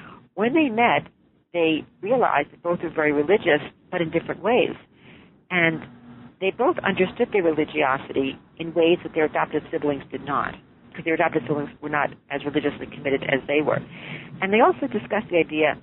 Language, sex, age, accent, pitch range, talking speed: English, female, 50-69, American, 150-190 Hz, 175 wpm